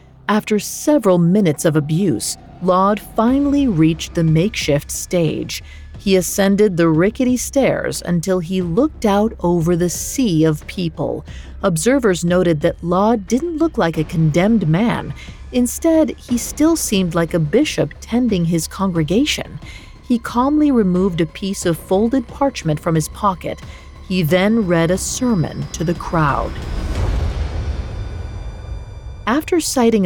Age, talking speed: 40-59, 130 wpm